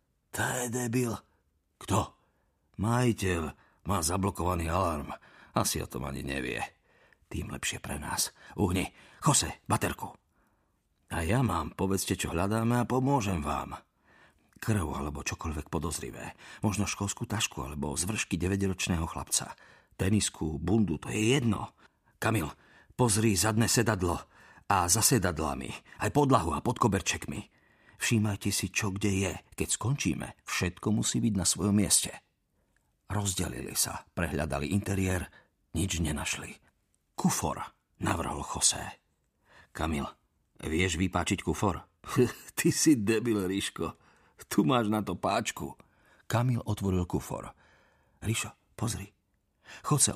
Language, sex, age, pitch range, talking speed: Slovak, male, 50-69, 80-110 Hz, 120 wpm